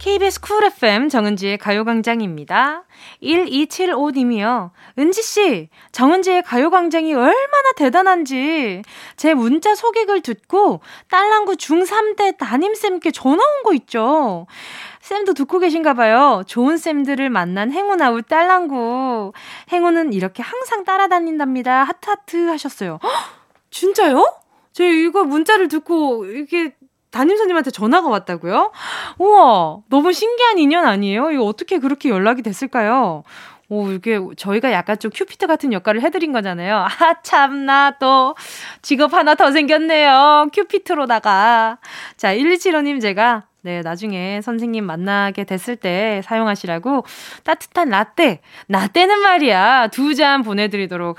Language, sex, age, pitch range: Korean, female, 20-39, 220-350 Hz